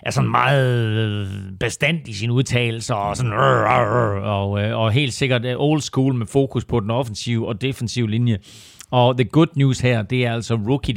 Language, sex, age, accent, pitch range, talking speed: Danish, male, 40-59, native, 115-135 Hz, 170 wpm